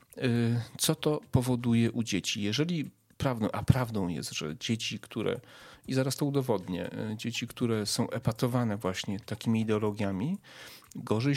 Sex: male